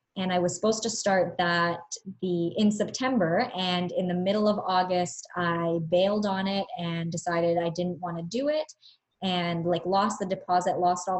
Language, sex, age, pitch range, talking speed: English, male, 20-39, 175-210 Hz, 190 wpm